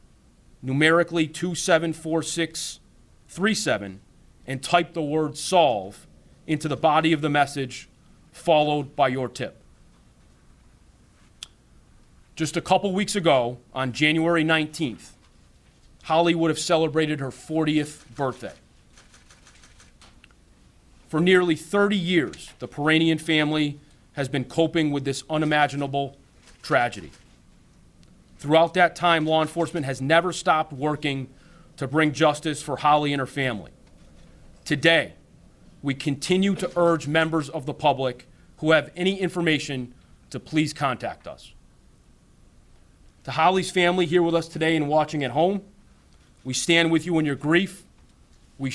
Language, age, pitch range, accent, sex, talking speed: English, 30-49, 135-165 Hz, American, male, 120 wpm